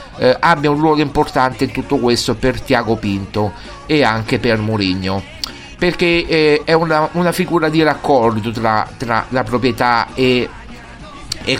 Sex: male